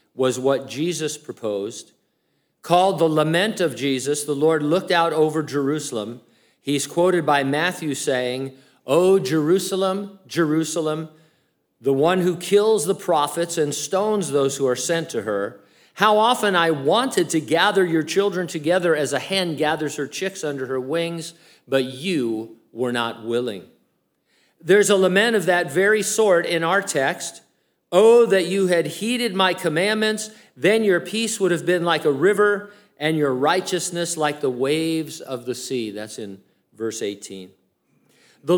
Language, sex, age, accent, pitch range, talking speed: English, male, 50-69, American, 140-190 Hz, 155 wpm